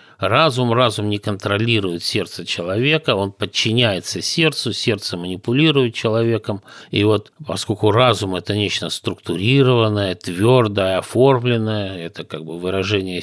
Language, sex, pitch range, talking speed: Russian, male, 95-120 Hz, 115 wpm